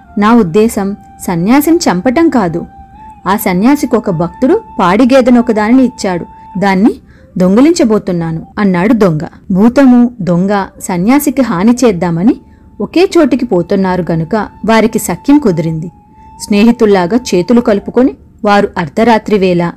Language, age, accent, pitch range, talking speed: Telugu, 30-49, native, 185-250 Hz, 95 wpm